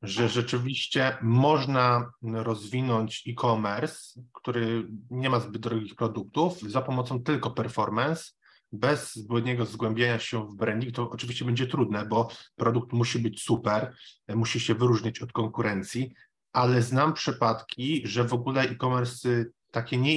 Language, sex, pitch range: Polish, male, 110-130 Hz